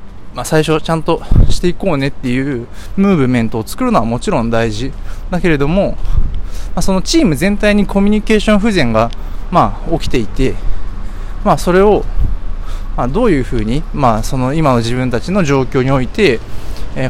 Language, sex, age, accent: Japanese, male, 20-39, native